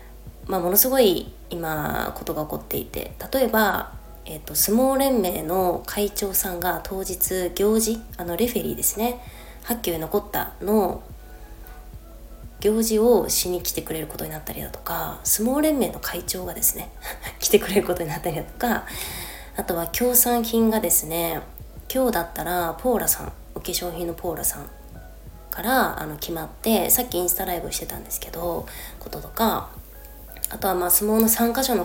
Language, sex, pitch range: Japanese, female, 170-225 Hz